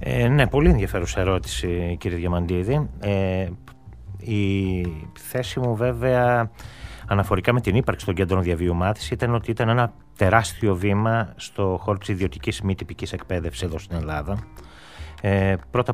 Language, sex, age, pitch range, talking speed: Greek, male, 30-49, 95-120 Hz, 135 wpm